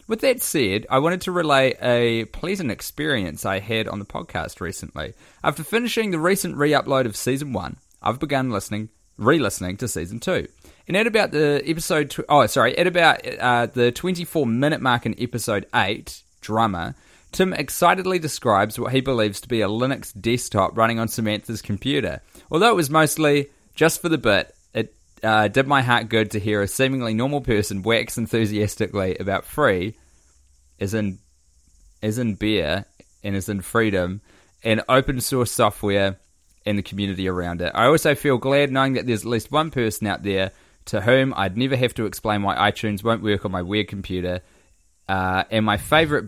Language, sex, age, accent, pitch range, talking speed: English, male, 20-39, Australian, 105-135 Hz, 180 wpm